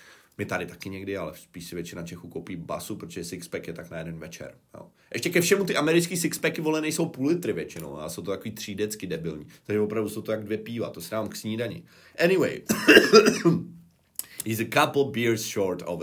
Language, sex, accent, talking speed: Czech, male, native, 205 wpm